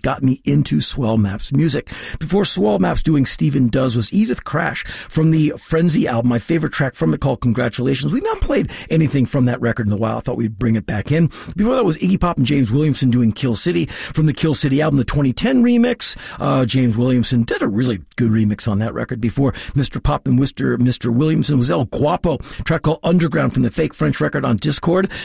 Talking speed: 220 wpm